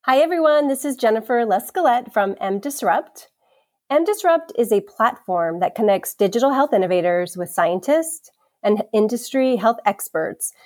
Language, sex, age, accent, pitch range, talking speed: English, female, 30-49, American, 195-245 Hz, 140 wpm